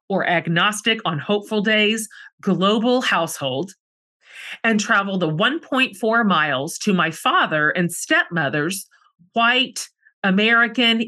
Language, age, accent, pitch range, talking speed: English, 40-59, American, 175-225 Hz, 105 wpm